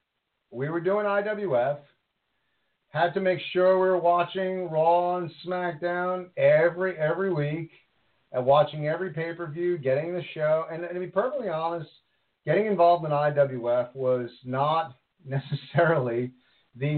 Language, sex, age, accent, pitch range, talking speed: English, male, 50-69, American, 140-180 Hz, 135 wpm